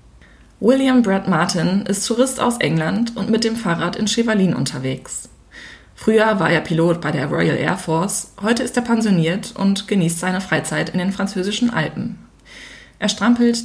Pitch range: 165-210 Hz